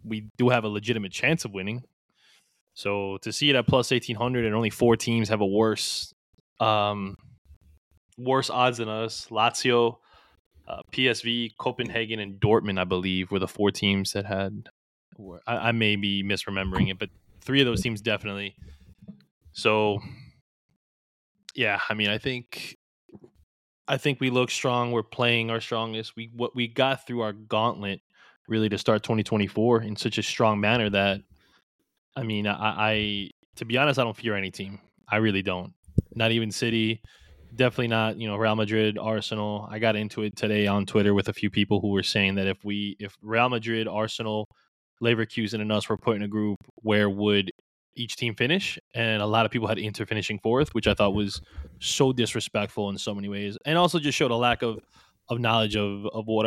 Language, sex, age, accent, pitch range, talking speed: English, male, 20-39, American, 100-115 Hz, 185 wpm